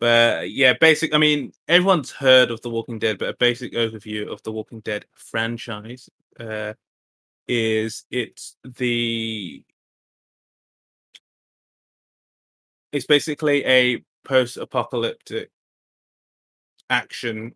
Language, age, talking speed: English, 20-39, 105 wpm